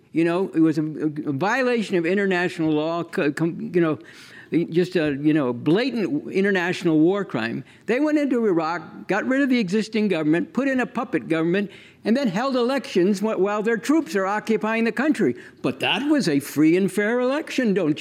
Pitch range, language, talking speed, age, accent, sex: 165-210 Hz, English, 180 wpm, 60-79, American, male